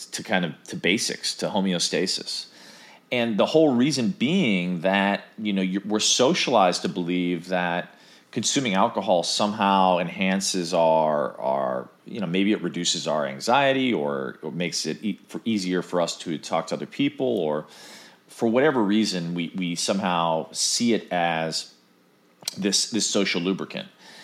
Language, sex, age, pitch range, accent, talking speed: English, male, 40-59, 80-105 Hz, American, 155 wpm